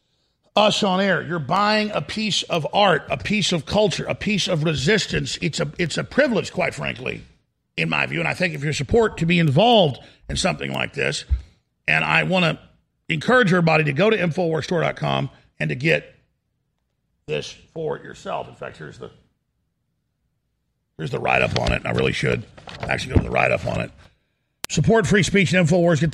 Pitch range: 150-190 Hz